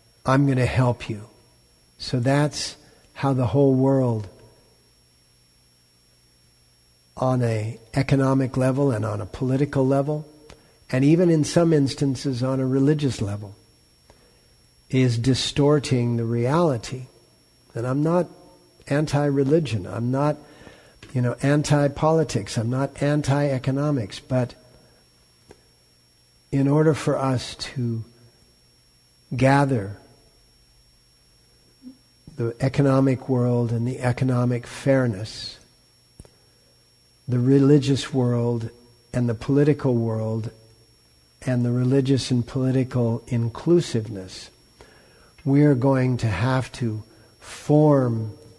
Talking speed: 100 wpm